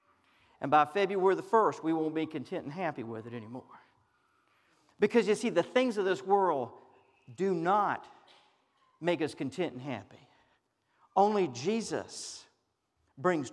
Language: English